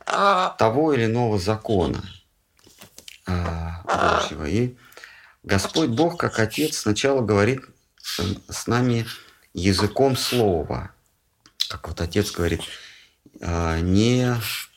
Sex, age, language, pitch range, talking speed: male, 50-69, Russian, 85-110 Hz, 85 wpm